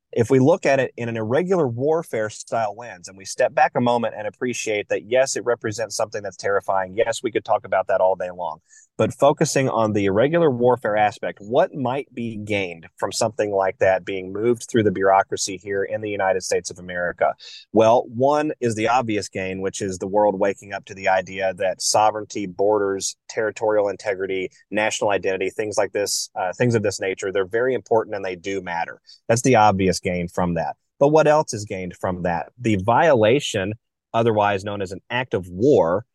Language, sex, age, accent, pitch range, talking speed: English, male, 30-49, American, 95-130 Hz, 205 wpm